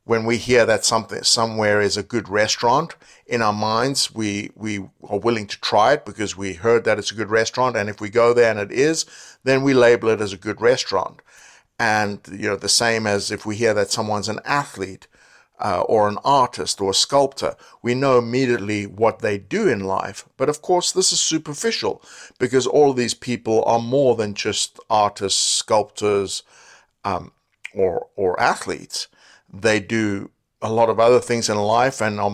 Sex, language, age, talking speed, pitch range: male, English, 60-79, 195 wpm, 100-120 Hz